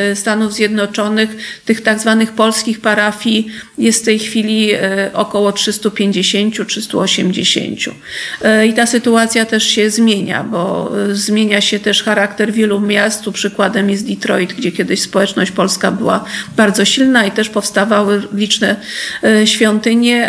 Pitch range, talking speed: 210-225 Hz, 125 wpm